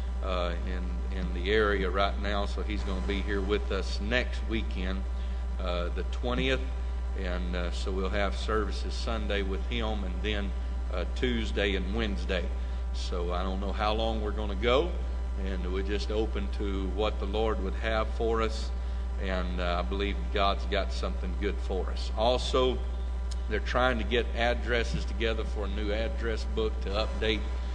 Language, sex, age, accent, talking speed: English, male, 50-69, American, 175 wpm